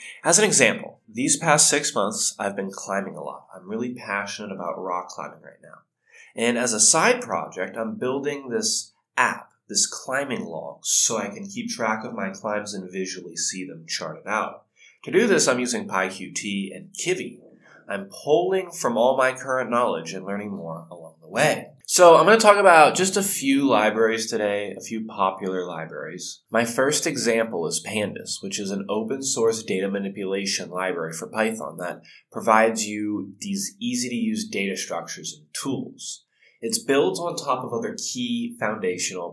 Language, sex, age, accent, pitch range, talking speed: English, male, 20-39, American, 100-165 Hz, 175 wpm